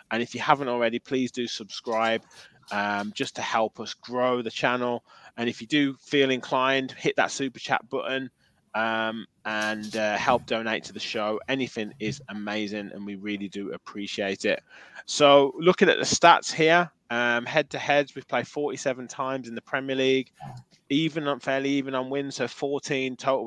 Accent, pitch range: British, 110-130 Hz